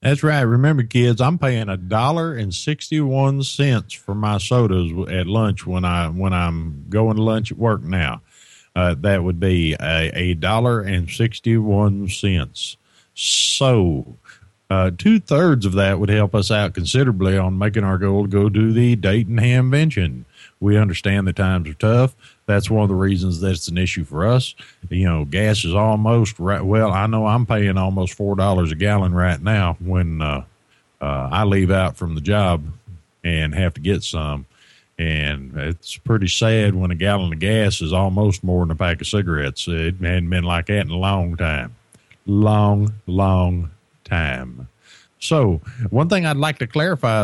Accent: American